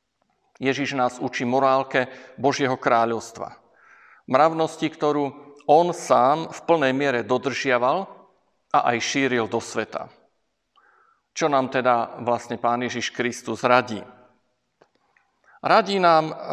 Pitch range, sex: 125-155 Hz, male